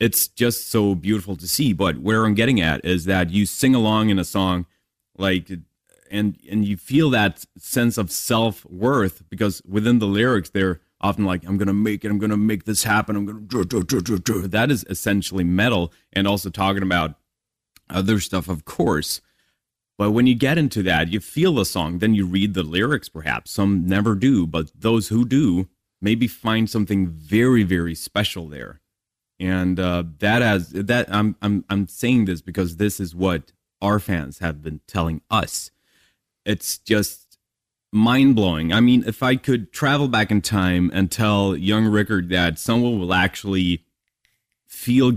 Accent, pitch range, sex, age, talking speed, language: American, 90-110 Hz, male, 30-49, 175 wpm, German